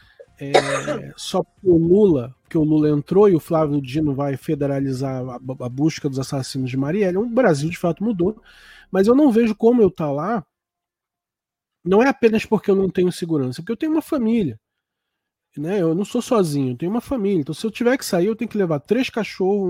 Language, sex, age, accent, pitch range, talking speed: Portuguese, male, 20-39, Brazilian, 150-230 Hz, 205 wpm